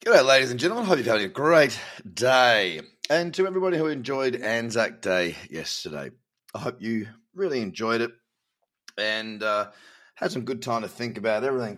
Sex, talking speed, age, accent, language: male, 175 wpm, 30-49, Australian, English